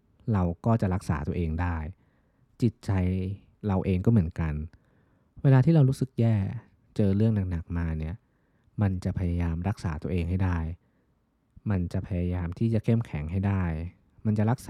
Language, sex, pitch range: Thai, male, 85-110 Hz